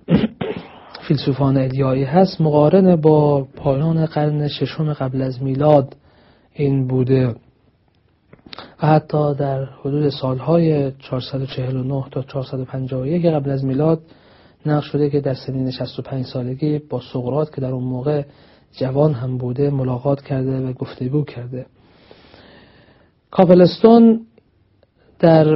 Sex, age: male, 40-59